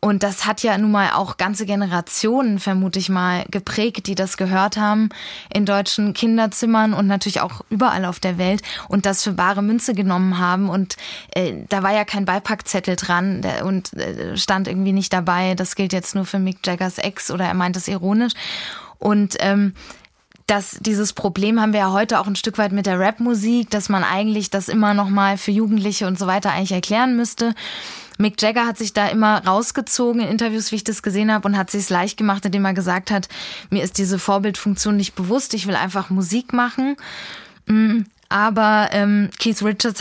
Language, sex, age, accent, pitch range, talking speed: German, female, 20-39, German, 190-215 Hz, 200 wpm